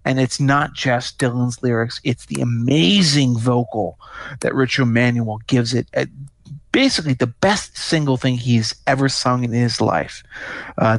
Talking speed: 155 wpm